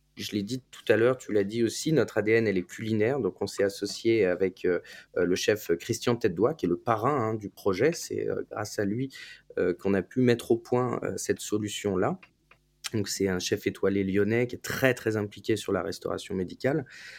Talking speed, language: 215 wpm, French